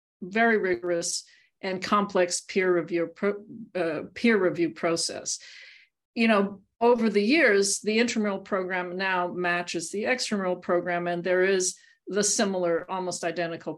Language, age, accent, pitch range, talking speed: English, 50-69, American, 175-220 Hz, 130 wpm